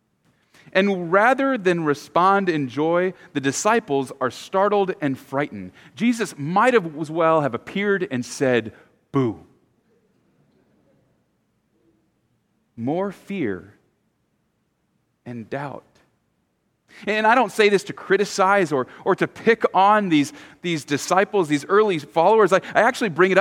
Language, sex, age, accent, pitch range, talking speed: English, male, 40-59, American, 130-200 Hz, 125 wpm